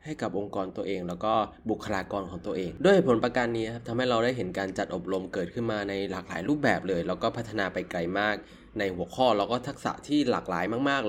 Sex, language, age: male, Thai, 20-39